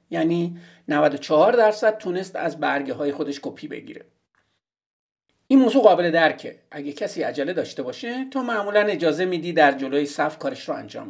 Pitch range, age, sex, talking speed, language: 155-230 Hz, 50-69, male, 155 wpm, Persian